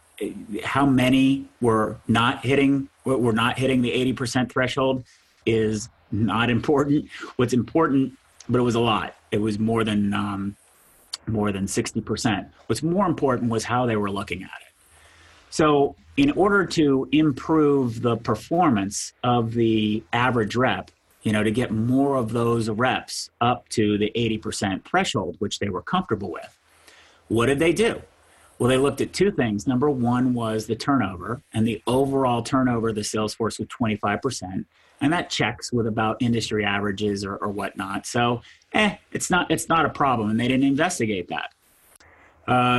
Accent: American